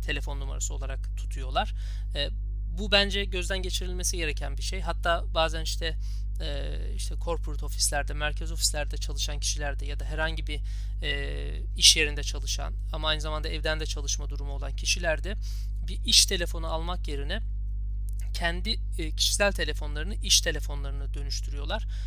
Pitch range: 100-145 Hz